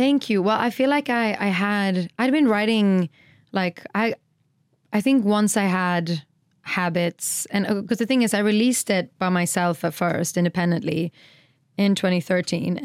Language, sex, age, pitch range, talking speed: English, female, 20-39, 170-205 Hz, 165 wpm